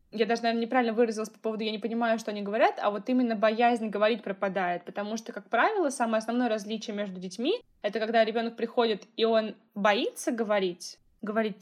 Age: 20-39